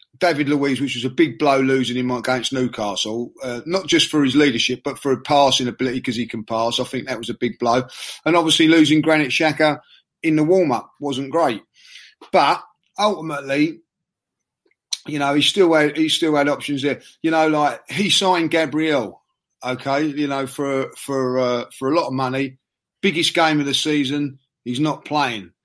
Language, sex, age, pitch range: English, male, 30-49, 130-175 Hz